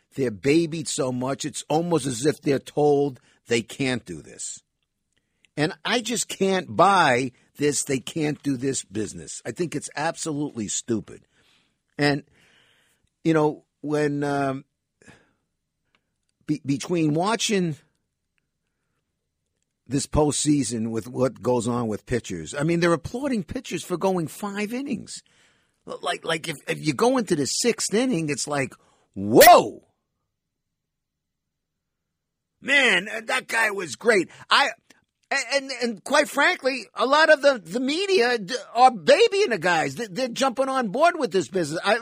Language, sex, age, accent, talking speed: English, male, 50-69, American, 135 wpm